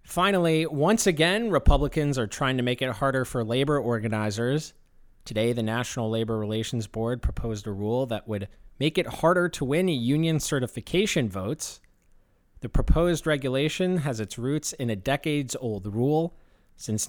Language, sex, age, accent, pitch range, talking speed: English, male, 30-49, American, 110-150 Hz, 155 wpm